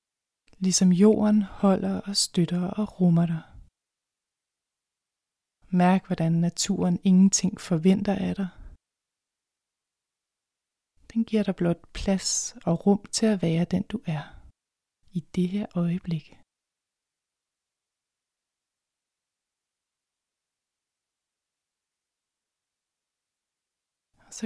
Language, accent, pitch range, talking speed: Danish, native, 175-200 Hz, 80 wpm